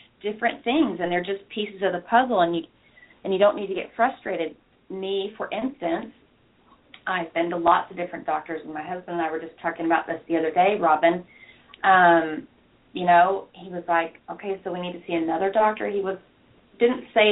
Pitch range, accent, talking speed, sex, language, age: 175-235 Hz, American, 210 wpm, female, English, 30-49